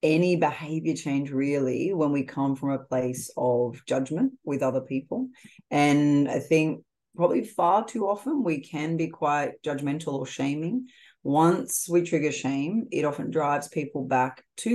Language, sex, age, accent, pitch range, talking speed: English, female, 30-49, Australian, 135-165 Hz, 160 wpm